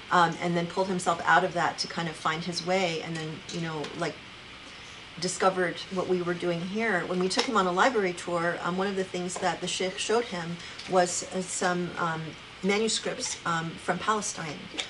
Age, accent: 30-49, American